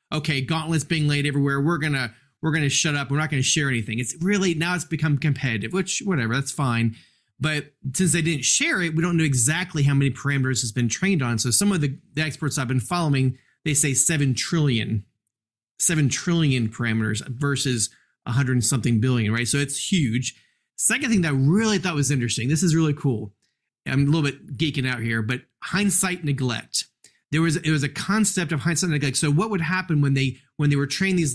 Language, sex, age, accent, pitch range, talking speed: English, male, 30-49, American, 130-160 Hz, 210 wpm